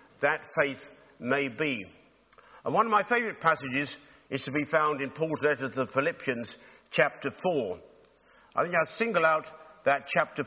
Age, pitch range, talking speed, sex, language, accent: 50-69, 140-170 Hz, 165 wpm, male, English, British